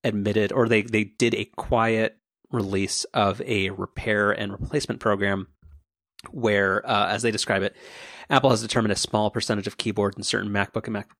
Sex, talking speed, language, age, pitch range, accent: male, 175 wpm, English, 30-49, 100-120 Hz, American